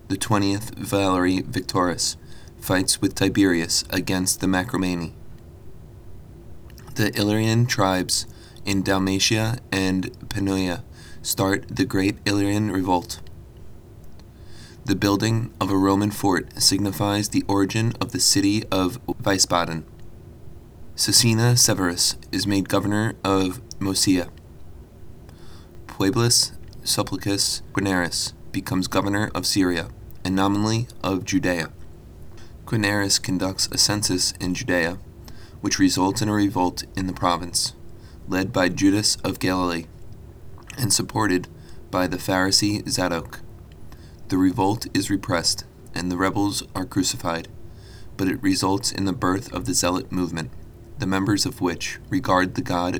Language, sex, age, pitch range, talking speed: English, male, 20-39, 90-110 Hz, 120 wpm